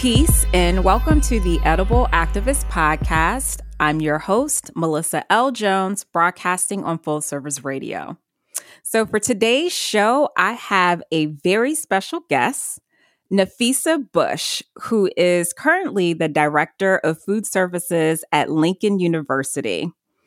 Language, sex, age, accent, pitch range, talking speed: English, female, 30-49, American, 160-210 Hz, 125 wpm